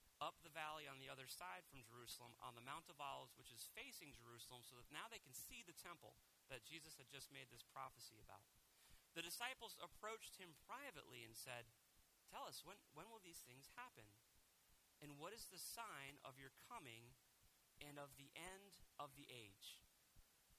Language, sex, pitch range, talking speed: English, male, 130-180 Hz, 185 wpm